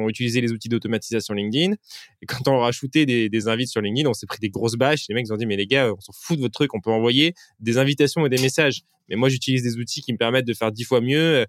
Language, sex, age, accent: French, male, 20-39, French